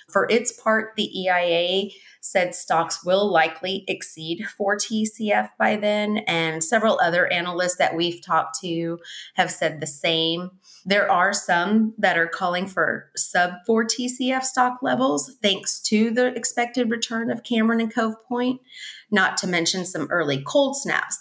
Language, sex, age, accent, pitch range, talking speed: English, female, 30-49, American, 165-215 Hz, 145 wpm